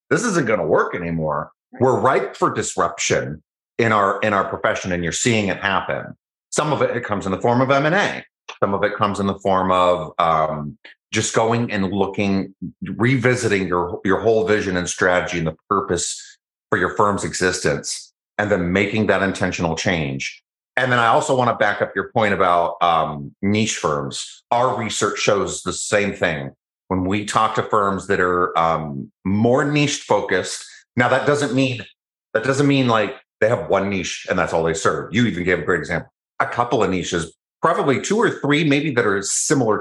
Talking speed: 195 wpm